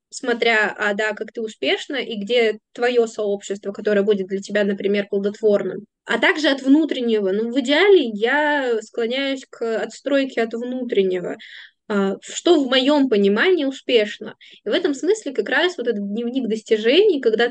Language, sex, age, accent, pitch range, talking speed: Russian, female, 10-29, native, 215-265 Hz, 155 wpm